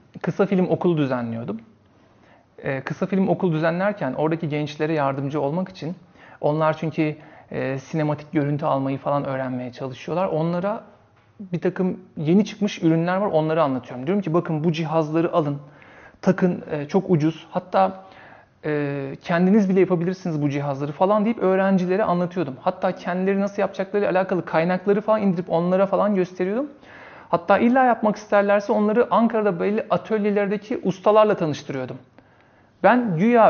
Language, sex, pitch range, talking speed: Turkish, male, 150-195 Hz, 135 wpm